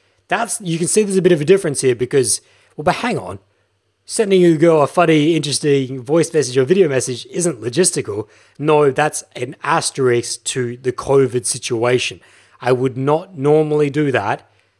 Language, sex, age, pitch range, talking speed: English, male, 20-39, 120-160 Hz, 180 wpm